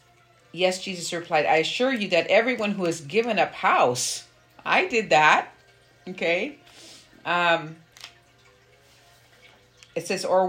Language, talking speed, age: English, 120 wpm, 50-69